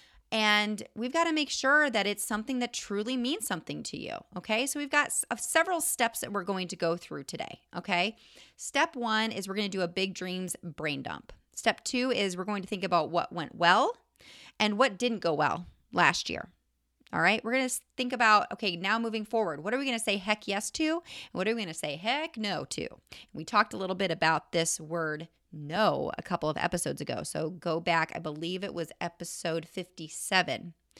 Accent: American